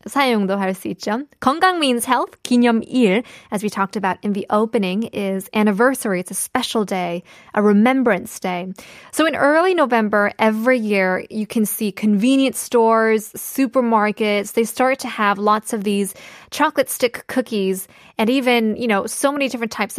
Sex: female